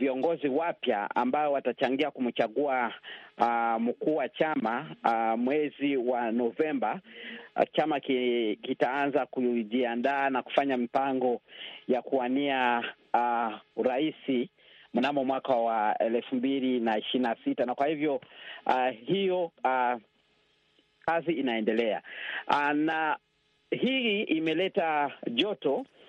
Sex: male